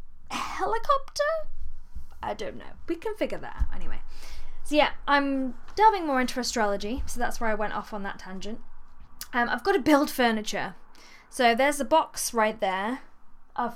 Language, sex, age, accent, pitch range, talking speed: English, female, 10-29, British, 210-260 Hz, 170 wpm